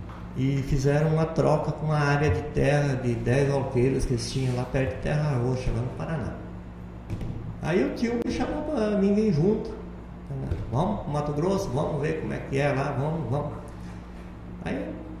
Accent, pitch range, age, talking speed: Brazilian, 115-155 Hz, 50-69, 180 wpm